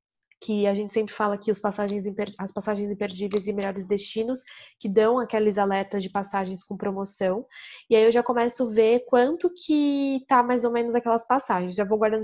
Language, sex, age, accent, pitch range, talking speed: Portuguese, female, 10-29, Brazilian, 210-240 Hz, 185 wpm